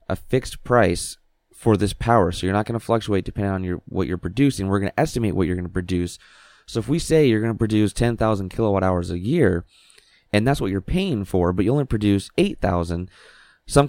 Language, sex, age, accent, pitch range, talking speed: English, male, 20-39, American, 90-115 Hz, 225 wpm